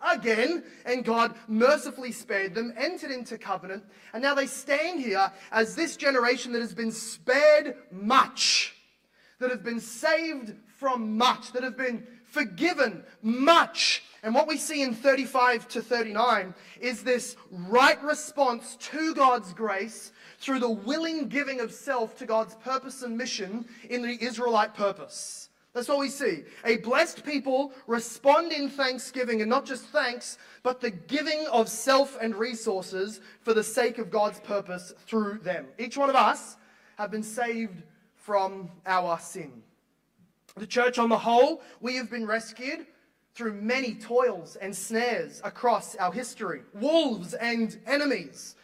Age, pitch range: 20-39, 220-270 Hz